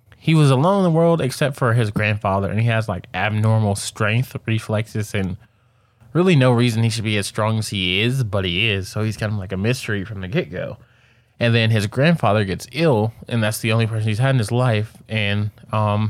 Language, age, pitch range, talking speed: English, 20-39, 105-125 Hz, 225 wpm